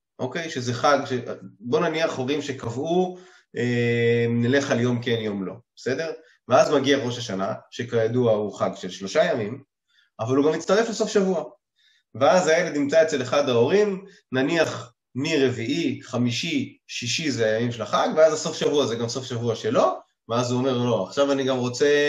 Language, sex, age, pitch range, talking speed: Hebrew, male, 20-39, 120-155 Hz, 170 wpm